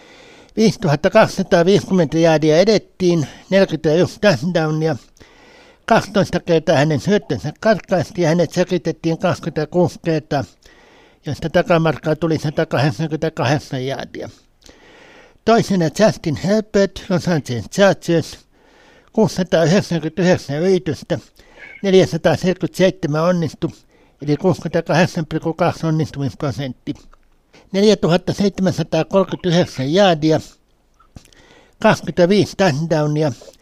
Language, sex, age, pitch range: Finnish, male, 60-79, 155-190 Hz